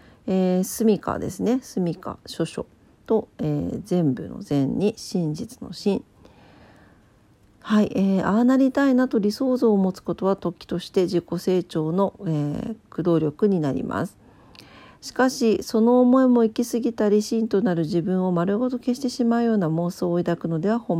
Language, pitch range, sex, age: Japanese, 165-220 Hz, female, 50-69